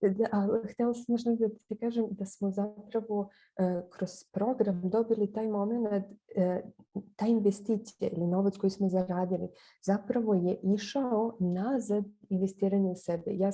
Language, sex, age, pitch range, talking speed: Croatian, female, 20-39, 185-225 Hz, 135 wpm